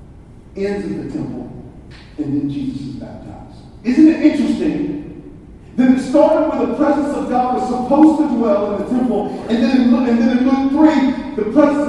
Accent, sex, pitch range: American, male, 190-265 Hz